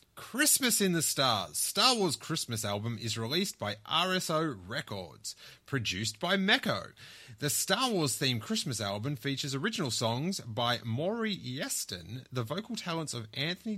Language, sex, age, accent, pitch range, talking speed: English, male, 30-49, Australian, 115-190 Hz, 145 wpm